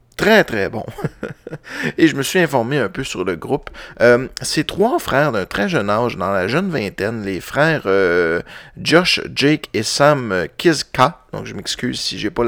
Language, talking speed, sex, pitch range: French, 190 wpm, male, 105-135 Hz